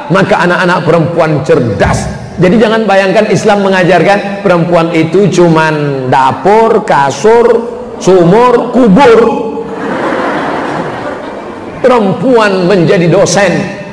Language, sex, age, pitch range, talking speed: Indonesian, male, 50-69, 175-215 Hz, 80 wpm